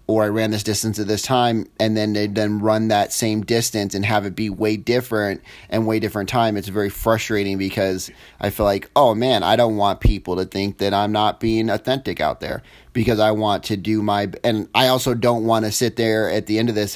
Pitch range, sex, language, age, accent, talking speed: 100-115 Hz, male, English, 30-49, American, 235 wpm